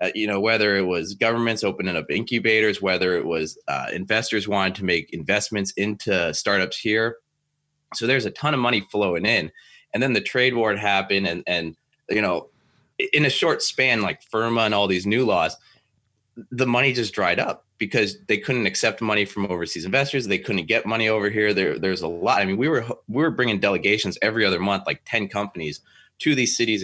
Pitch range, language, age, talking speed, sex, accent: 95-115 Hz, English, 20-39, 205 wpm, male, American